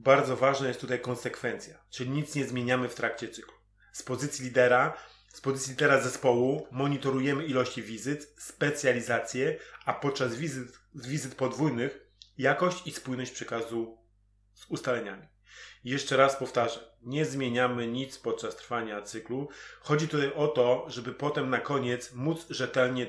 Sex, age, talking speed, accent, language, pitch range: male, 30-49, 140 wpm, native, Polish, 125-150 Hz